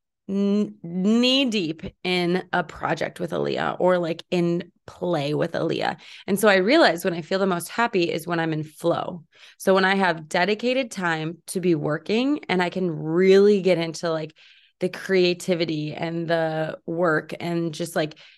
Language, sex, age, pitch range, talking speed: English, female, 20-39, 165-195 Hz, 170 wpm